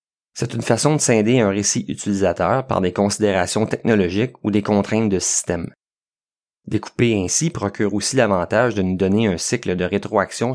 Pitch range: 95-115 Hz